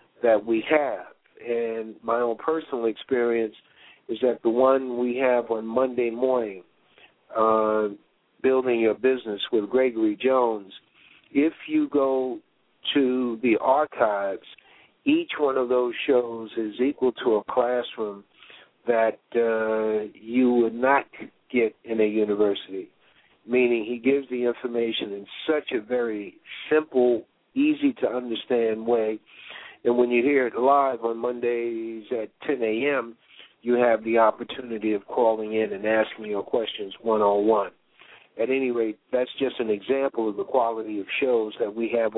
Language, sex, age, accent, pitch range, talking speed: English, male, 50-69, American, 110-130 Hz, 145 wpm